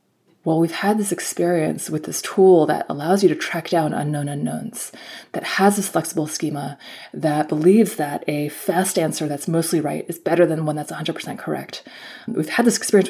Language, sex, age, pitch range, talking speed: English, female, 20-39, 155-185 Hz, 190 wpm